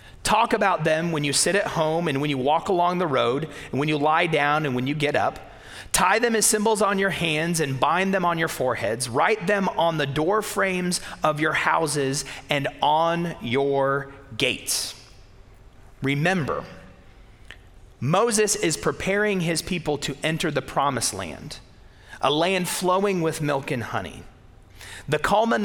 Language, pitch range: English, 115-175 Hz